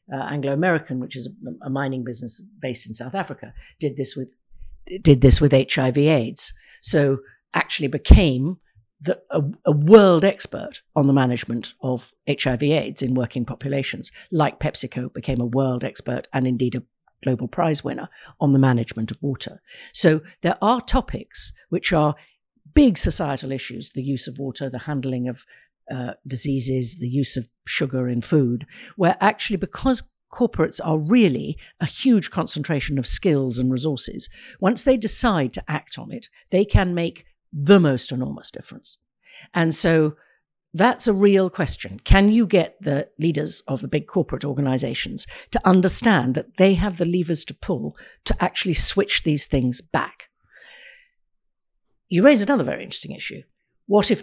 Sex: female